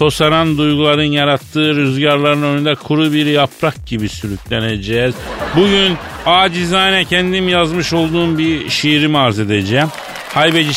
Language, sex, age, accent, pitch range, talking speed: Turkish, male, 50-69, native, 125-190 Hz, 110 wpm